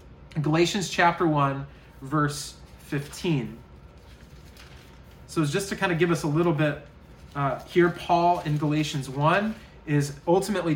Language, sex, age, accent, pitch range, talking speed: English, male, 30-49, American, 145-185 Hz, 135 wpm